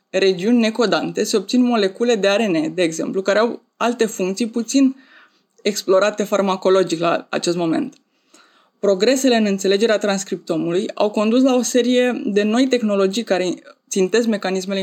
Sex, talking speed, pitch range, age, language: female, 140 wpm, 195-235 Hz, 20-39, Romanian